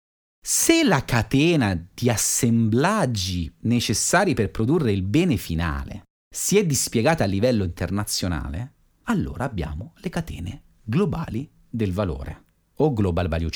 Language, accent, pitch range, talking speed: Italian, native, 85-135 Hz, 120 wpm